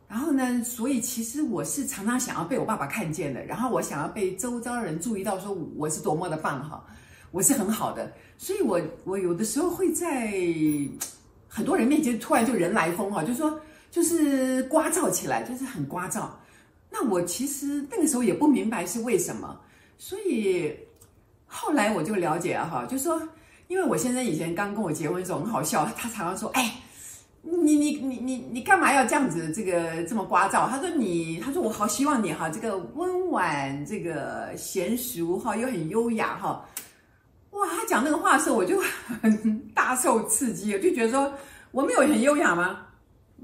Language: Chinese